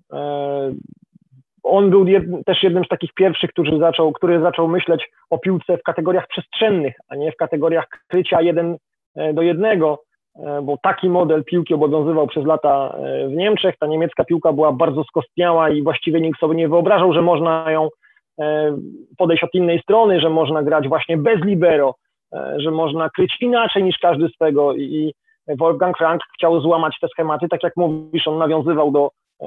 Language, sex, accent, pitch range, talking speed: Polish, male, native, 155-185 Hz, 160 wpm